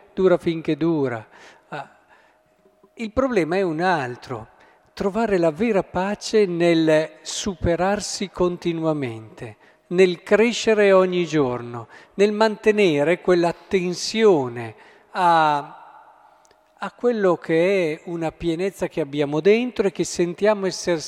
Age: 50-69